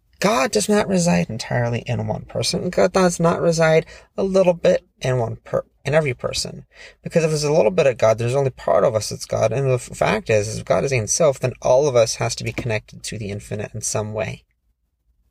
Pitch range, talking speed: 90-145 Hz, 240 wpm